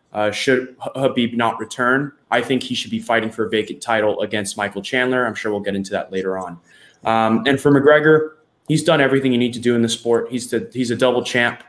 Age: 20-39